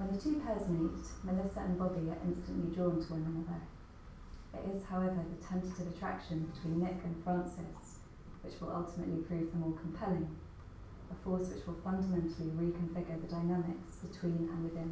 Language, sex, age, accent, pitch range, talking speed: English, female, 30-49, British, 155-175 Hz, 170 wpm